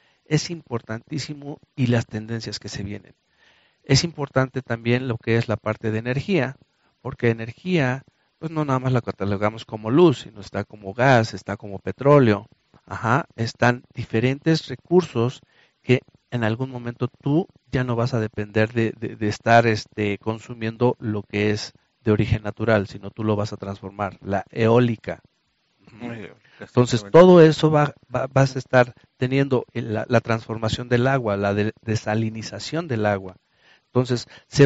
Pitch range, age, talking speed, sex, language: 110-135 Hz, 50-69, 155 wpm, male, Spanish